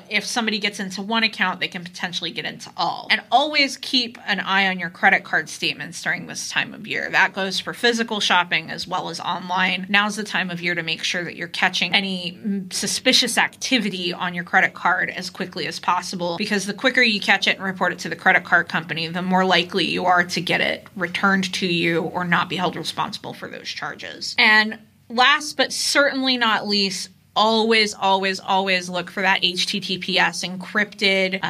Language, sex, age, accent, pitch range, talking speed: English, female, 20-39, American, 180-210 Hz, 200 wpm